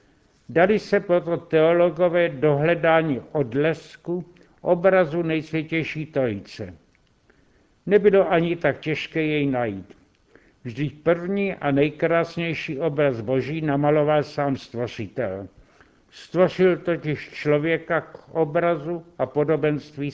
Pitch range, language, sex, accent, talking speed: 145-175 Hz, Czech, male, native, 90 wpm